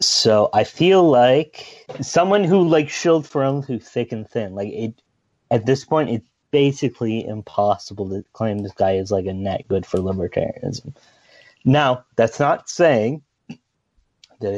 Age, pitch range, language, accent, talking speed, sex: 30-49, 105-125 Hz, English, American, 150 wpm, male